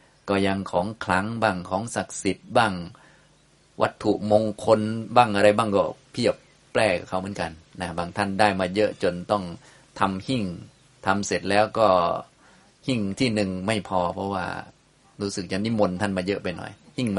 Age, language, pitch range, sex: 20-39, Thai, 95-110 Hz, male